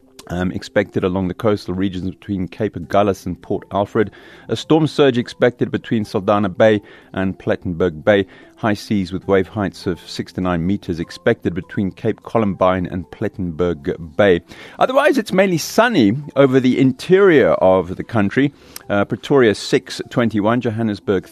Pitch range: 95-120 Hz